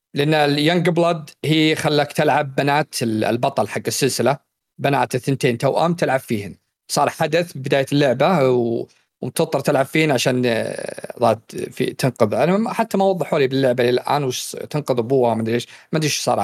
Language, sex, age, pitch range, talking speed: Arabic, male, 40-59, 125-175 Hz, 145 wpm